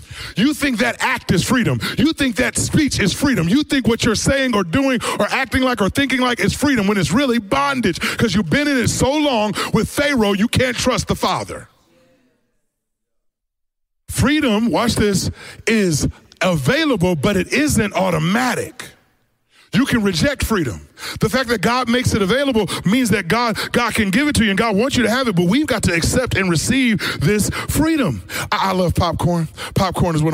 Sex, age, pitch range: male, 30-49, 130-225 Hz